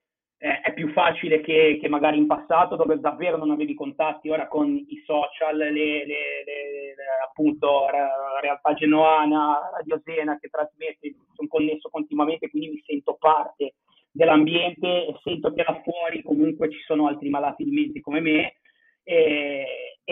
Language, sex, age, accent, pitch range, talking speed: Italian, male, 30-49, native, 150-210 Hz, 150 wpm